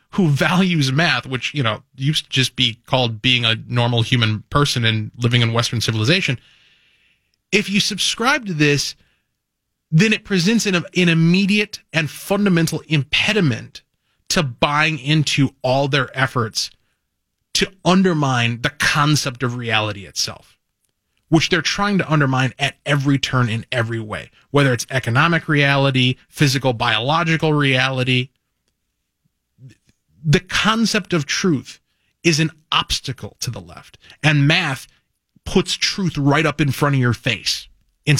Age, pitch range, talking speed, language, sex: 30-49, 115-155 Hz, 140 wpm, English, male